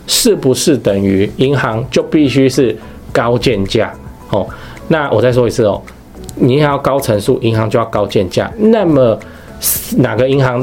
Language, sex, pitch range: Chinese, male, 105-140 Hz